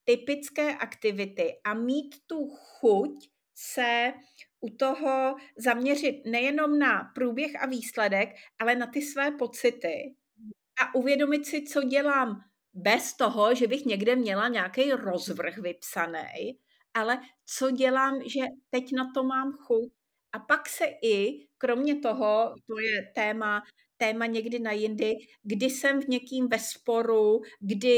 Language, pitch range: Czech, 225-265 Hz